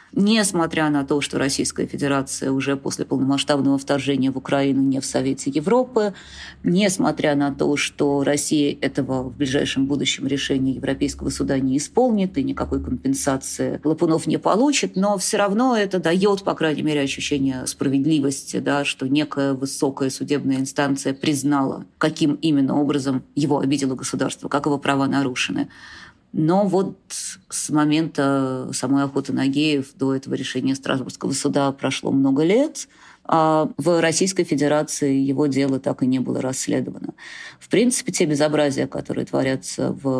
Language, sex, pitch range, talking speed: Russian, female, 135-165 Hz, 145 wpm